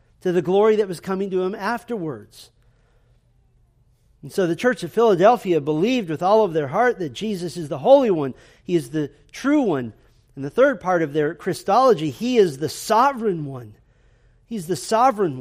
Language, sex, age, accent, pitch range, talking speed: English, male, 40-59, American, 150-220 Hz, 180 wpm